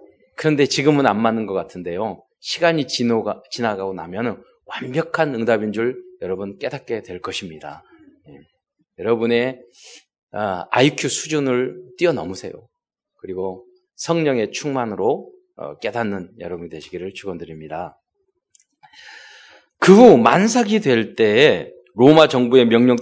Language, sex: Korean, male